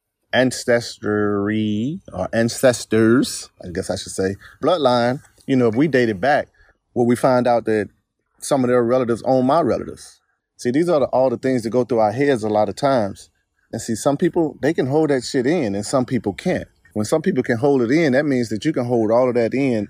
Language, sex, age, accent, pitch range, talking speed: English, male, 30-49, American, 105-130 Hz, 220 wpm